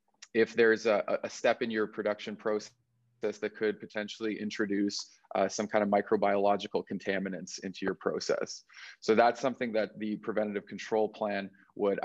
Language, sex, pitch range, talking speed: English, male, 105-115 Hz, 155 wpm